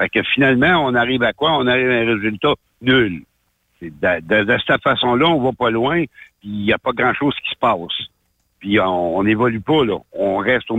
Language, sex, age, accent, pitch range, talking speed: French, male, 60-79, French, 105-130 Hz, 215 wpm